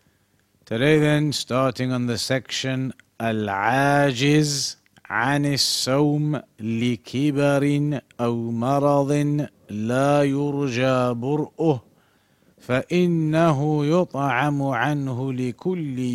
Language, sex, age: English, male, 50-69